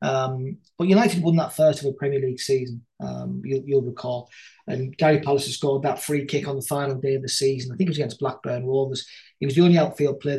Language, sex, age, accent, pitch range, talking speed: English, male, 30-49, British, 135-160 Hz, 245 wpm